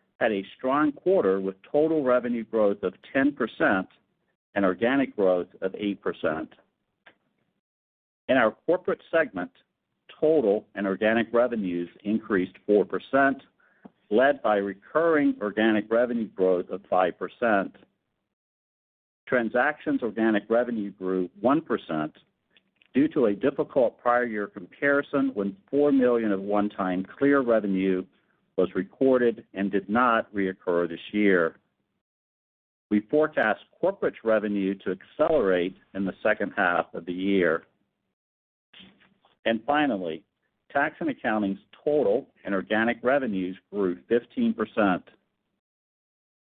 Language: English